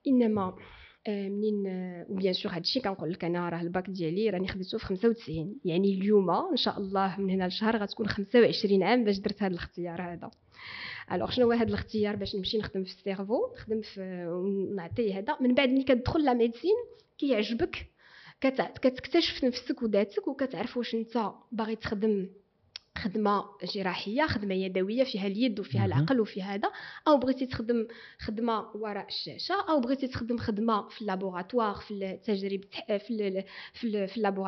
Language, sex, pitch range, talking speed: Arabic, female, 195-255 Hz, 150 wpm